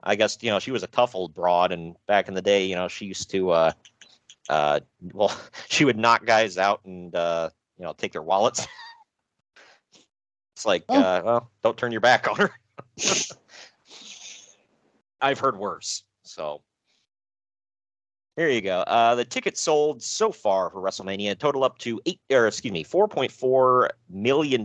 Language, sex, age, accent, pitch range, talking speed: English, male, 40-59, American, 100-125 Hz, 175 wpm